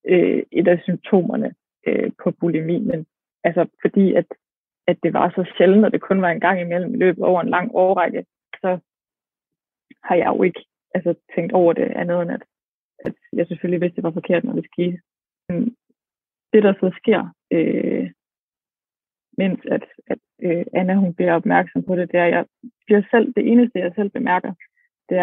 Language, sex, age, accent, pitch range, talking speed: Danish, female, 20-39, native, 180-210 Hz, 185 wpm